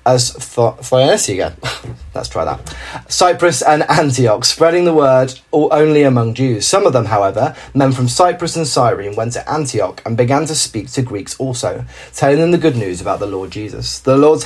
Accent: British